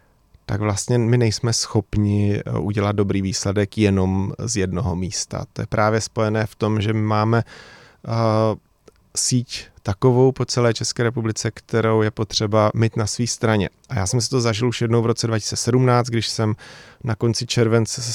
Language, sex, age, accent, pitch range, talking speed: Czech, male, 30-49, native, 105-120 Hz, 170 wpm